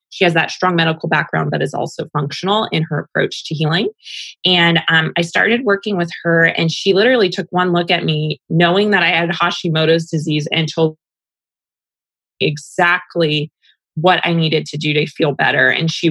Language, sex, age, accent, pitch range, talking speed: English, female, 20-39, American, 165-195 Hz, 185 wpm